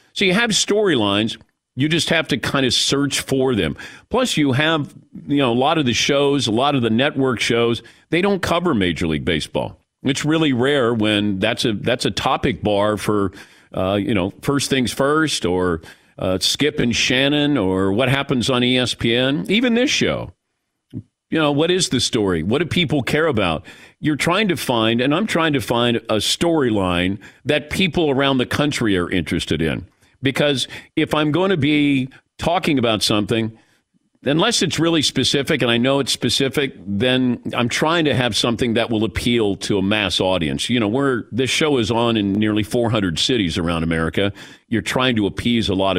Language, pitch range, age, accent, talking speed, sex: English, 105-145 Hz, 50-69, American, 190 wpm, male